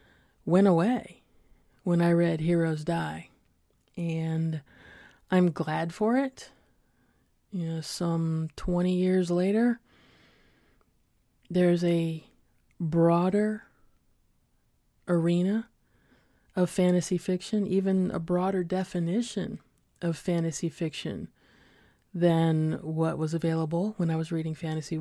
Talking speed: 100 wpm